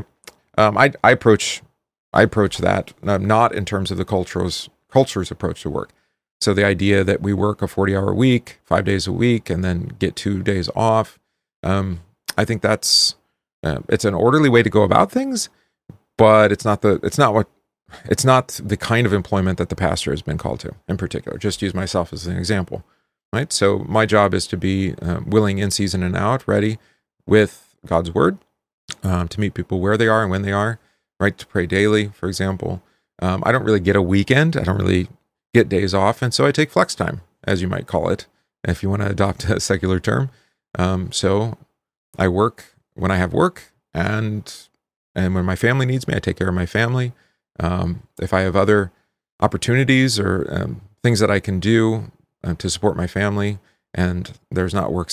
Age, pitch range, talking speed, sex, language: 40-59, 95-110 Hz, 200 wpm, male, English